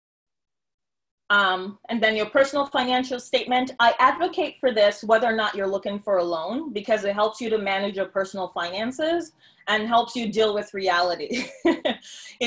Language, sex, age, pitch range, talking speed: English, female, 20-39, 195-250 Hz, 170 wpm